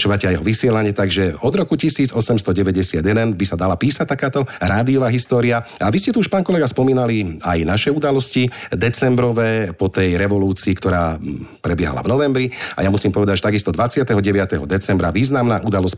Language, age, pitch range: Slovak, 40-59, 95-120 Hz